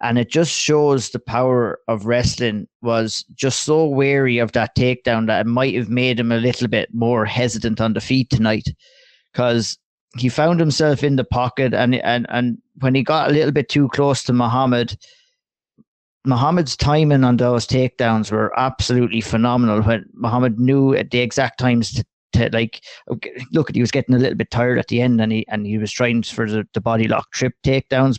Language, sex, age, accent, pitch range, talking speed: English, male, 30-49, Irish, 115-130 Hz, 195 wpm